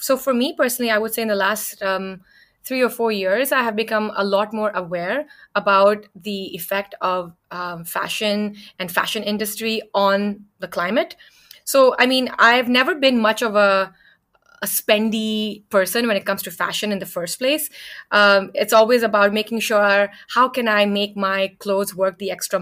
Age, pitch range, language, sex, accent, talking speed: 20-39, 195-230 Hz, Hindi, female, native, 185 wpm